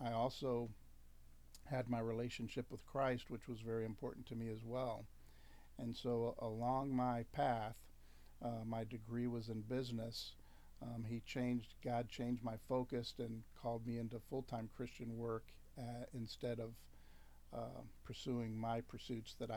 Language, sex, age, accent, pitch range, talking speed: English, male, 50-69, American, 110-125 Hz, 155 wpm